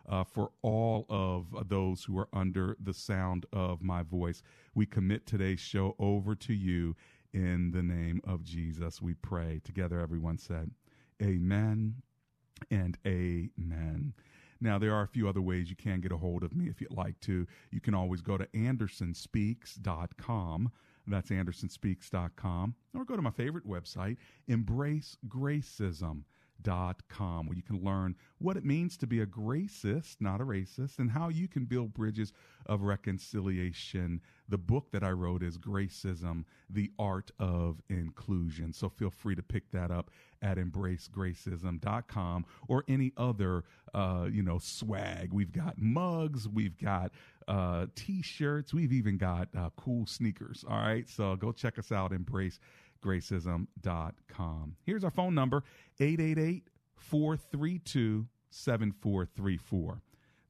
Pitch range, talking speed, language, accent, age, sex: 90-125 Hz, 145 wpm, English, American, 40-59, male